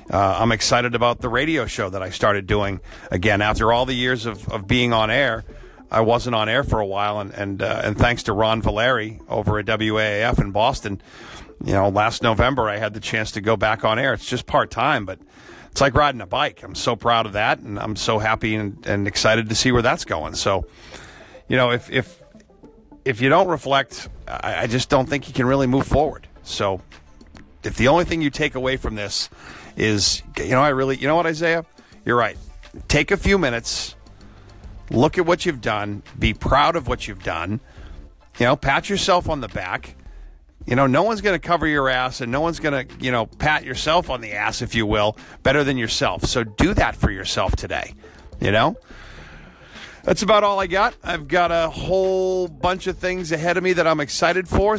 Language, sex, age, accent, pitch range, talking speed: English, male, 50-69, American, 105-150 Hz, 215 wpm